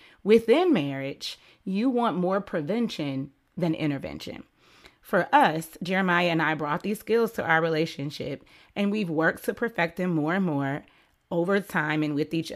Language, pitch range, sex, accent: English, 155-200 Hz, female, American